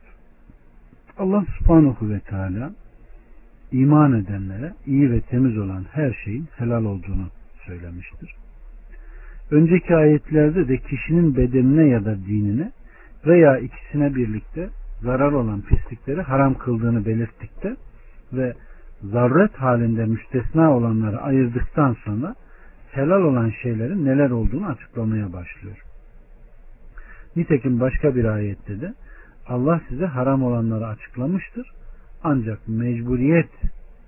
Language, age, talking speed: Turkish, 60-79, 105 wpm